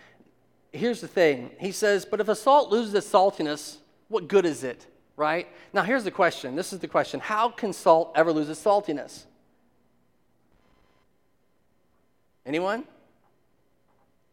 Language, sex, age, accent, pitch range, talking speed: English, male, 40-59, American, 145-195 Hz, 140 wpm